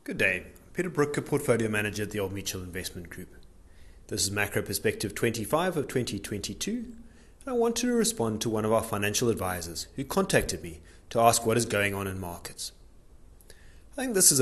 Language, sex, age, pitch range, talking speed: English, male, 30-49, 95-150 Hz, 185 wpm